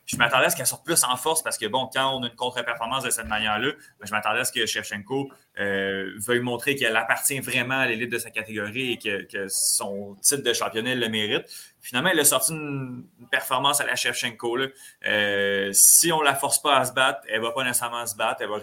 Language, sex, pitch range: French, male, 105-130 Hz